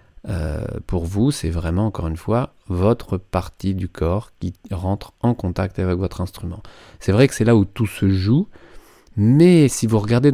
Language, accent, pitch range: French, French, 95-120 Hz